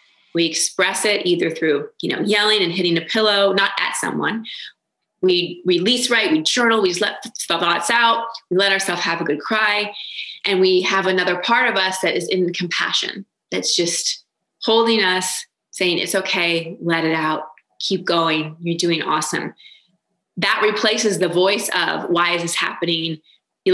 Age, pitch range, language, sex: 20-39, 175-215 Hz, English, female